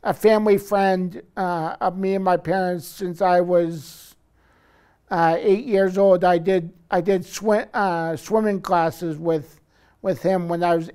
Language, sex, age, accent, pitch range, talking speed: English, male, 50-69, American, 170-195 Hz, 165 wpm